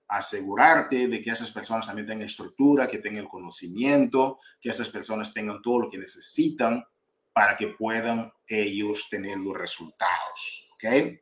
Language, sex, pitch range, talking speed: Spanish, male, 105-130 Hz, 150 wpm